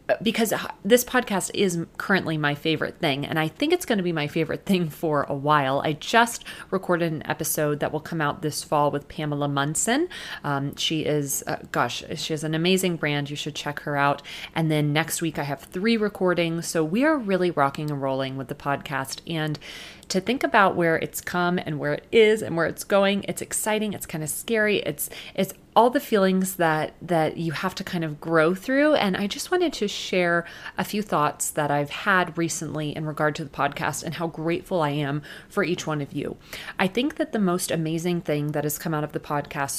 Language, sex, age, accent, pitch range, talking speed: English, female, 30-49, American, 150-190 Hz, 220 wpm